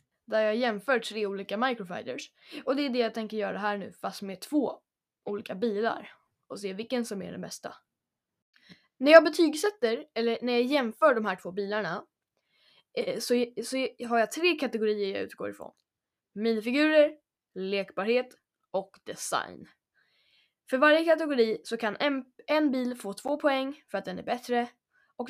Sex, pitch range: female, 215-290 Hz